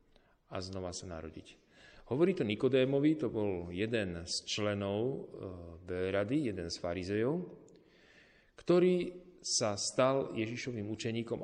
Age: 40-59